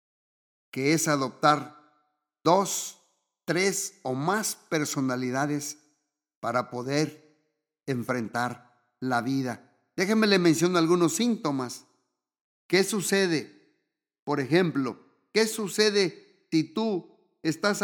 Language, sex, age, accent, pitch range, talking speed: Spanish, male, 50-69, Mexican, 140-175 Hz, 90 wpm